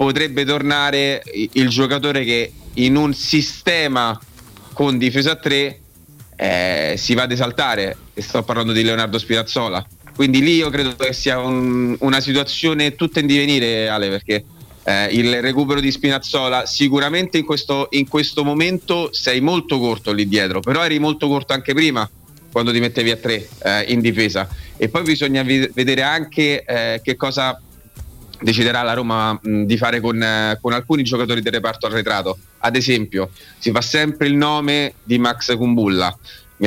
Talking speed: 155 wpm